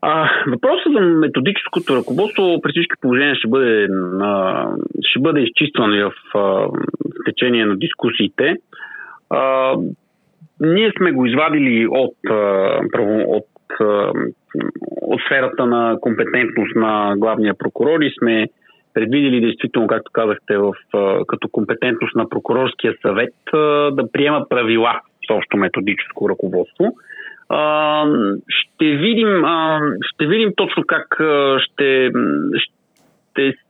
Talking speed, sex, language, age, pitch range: 105 wpm, male, Bulgarian, 40-59, 115-165 Hz